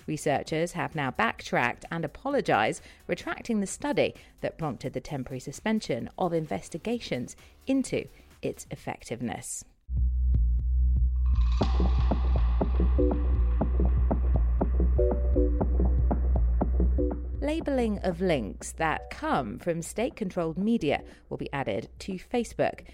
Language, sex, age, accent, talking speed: English, female, 40-59, British, 85 wpm